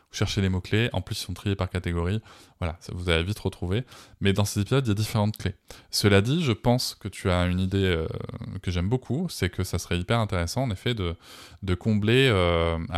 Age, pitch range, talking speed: 20-39, 85-105 Hz, 230 wpm